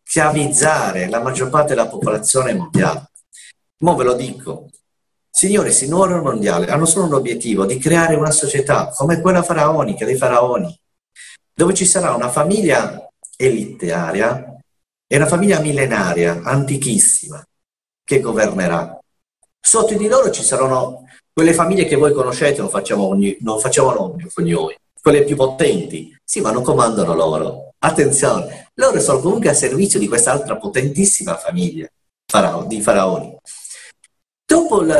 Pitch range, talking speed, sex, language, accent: 130-185 Hz, 130 wpm, male, Italian, native